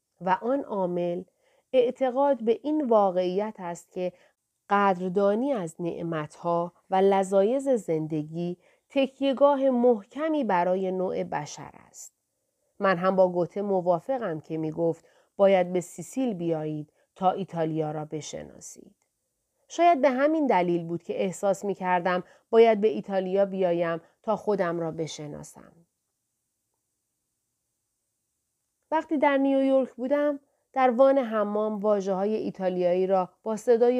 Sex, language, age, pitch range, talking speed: female, Persian, 40-59, 175-240 Hz, 115 wpm